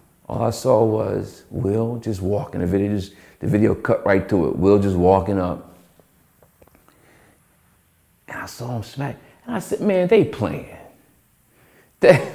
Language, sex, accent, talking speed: English, male, American, 155 wpm